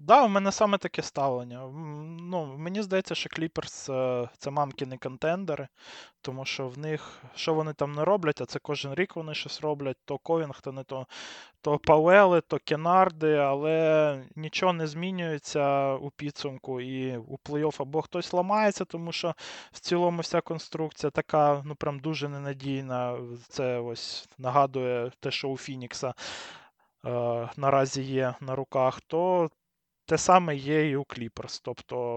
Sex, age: male, 20-39